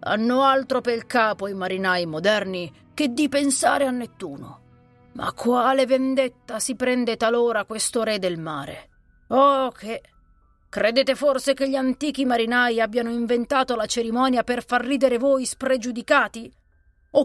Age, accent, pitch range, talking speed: 30-49, native, 195-265 Hz, 145 wpm